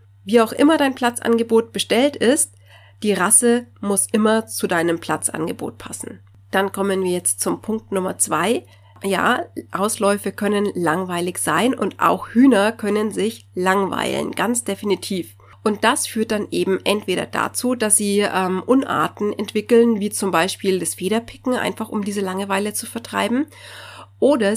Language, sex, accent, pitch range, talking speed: German, female, German, 180-220 Hz, 145 wpm